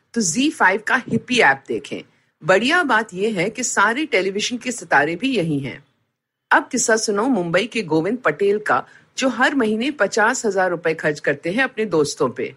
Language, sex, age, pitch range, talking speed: Hindi, female, 50-69, 160-245 Hz, 95 wpm